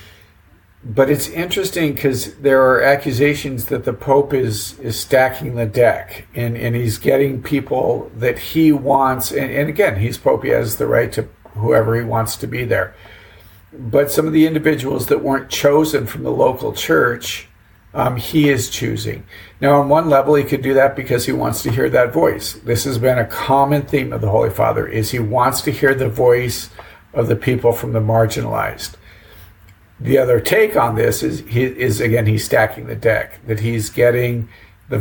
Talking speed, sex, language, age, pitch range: 190 wpm, male, English, 50-69, 110-140 Hz